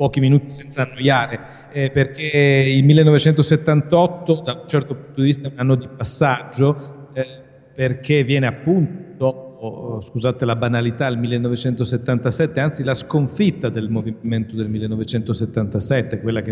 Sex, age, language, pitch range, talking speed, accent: male, 40-59, Italian, 120-145 Hz, 140 wpm, native